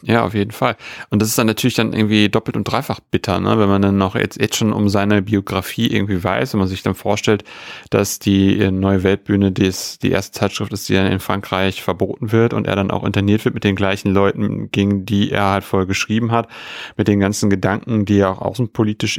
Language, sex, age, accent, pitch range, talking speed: German, male, 30-49, German, 100-110 Hz, 225 wpm